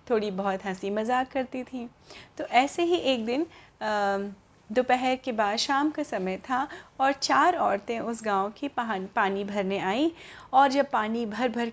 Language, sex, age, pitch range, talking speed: Hindi, female, 30-49, 205-290 Hz, 170 wpm